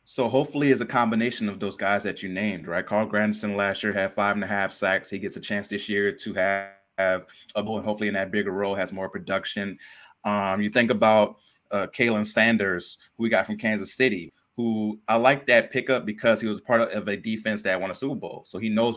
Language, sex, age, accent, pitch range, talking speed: English, male, 30-49, American, 100-115 Hz, 230 wpm